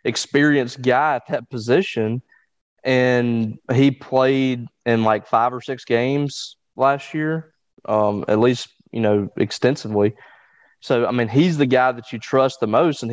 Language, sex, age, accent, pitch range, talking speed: English, male, 20-39, American, 115-140 Hz, 155 wpm